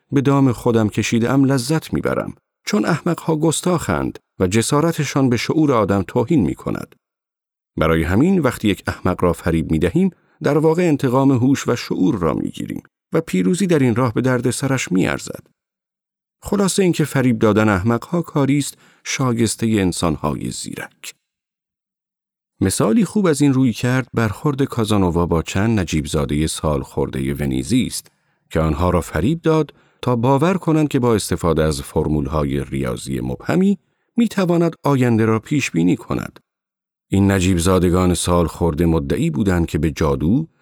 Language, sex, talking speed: Persian, male, 150 wpm